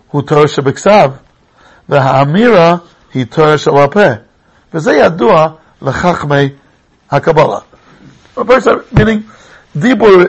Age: 60-79